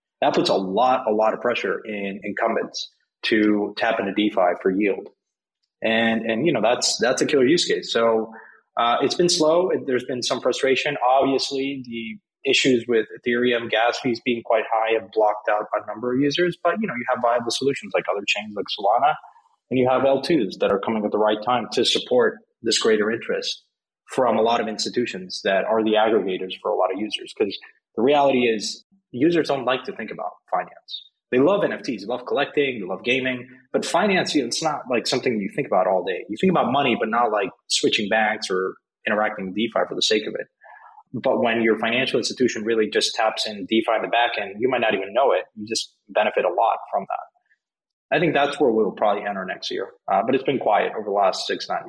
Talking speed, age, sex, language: 220 wpm, 20-39, male, English